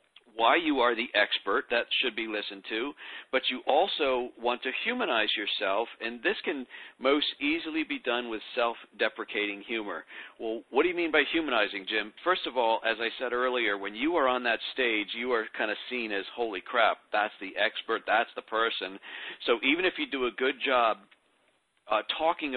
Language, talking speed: English, 190 wpm